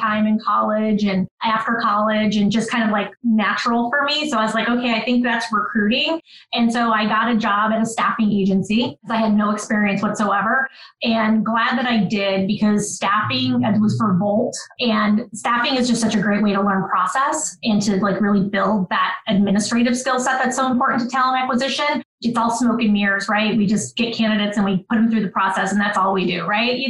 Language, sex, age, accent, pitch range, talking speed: English, female, 20-39, American, 205-235 Hz, 220 wpm